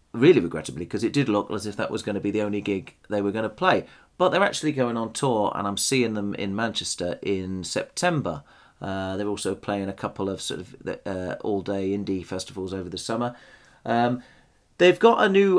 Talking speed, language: 215 wpm, English